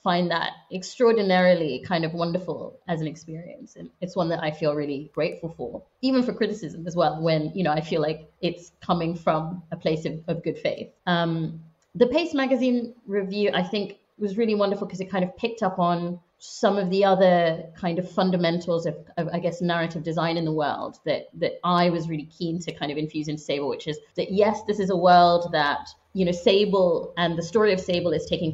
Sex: female